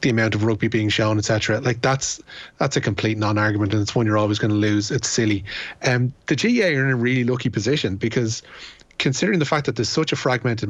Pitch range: 110-125 Hz